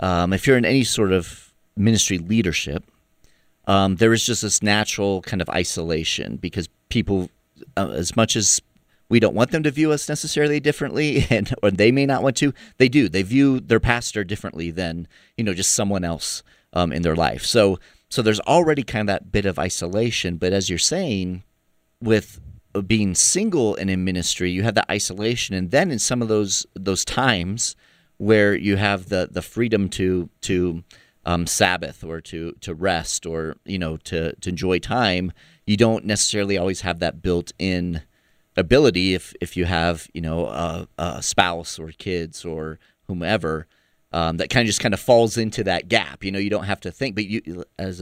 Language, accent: English, American